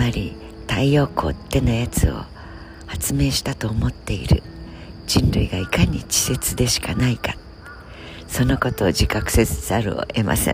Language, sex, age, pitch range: Japanese, female, 60-79, 85-125 Hz